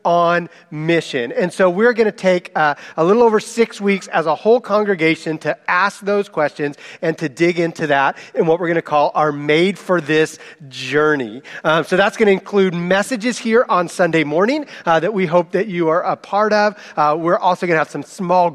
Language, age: English, 40-59